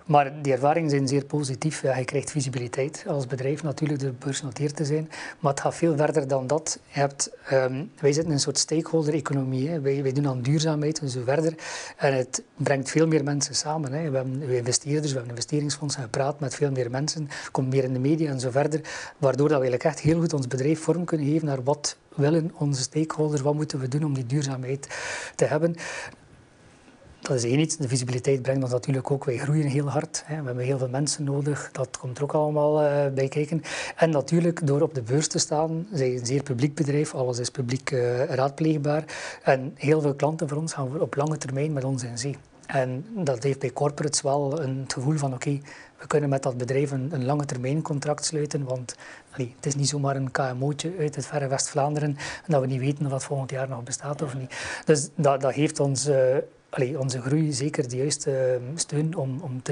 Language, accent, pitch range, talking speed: Dutch, Dutch, 135-150 Hz, 220 wpm